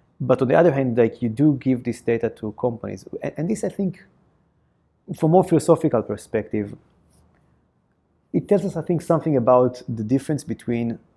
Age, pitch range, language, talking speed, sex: 30-49, 110-160 Hz, English, 170 wpm, male